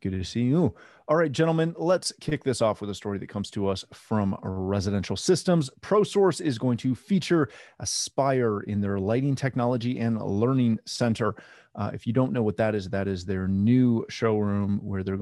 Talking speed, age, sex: 195 wpm, 30-49, male